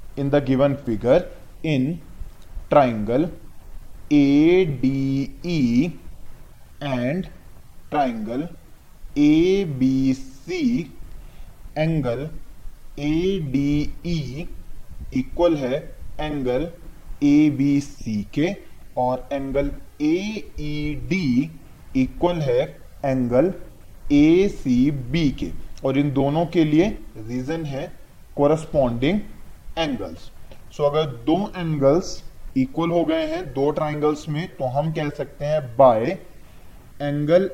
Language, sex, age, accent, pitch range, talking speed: Hindi, male, 30-49, native, 130-165 Hz, 80 wpm